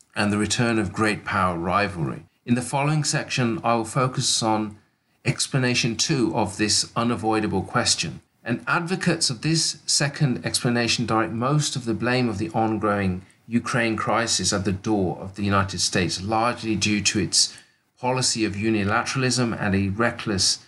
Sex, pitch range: male, 100-120 Hz